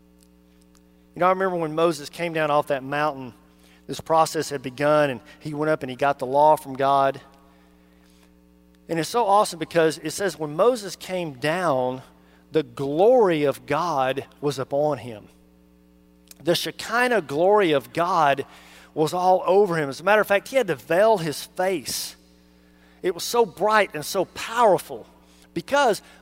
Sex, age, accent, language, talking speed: male, 40-59, American, English, 165 wpm